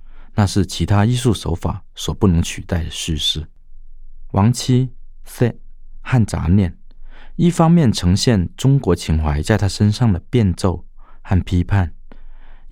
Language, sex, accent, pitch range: Chinese, male, native, 80-115 Hz